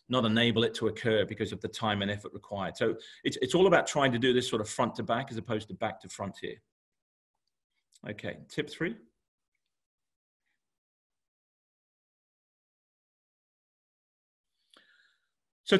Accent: British